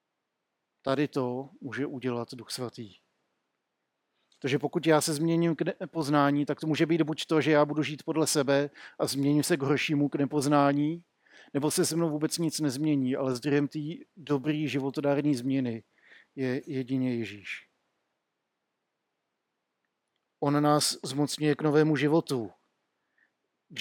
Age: 50-69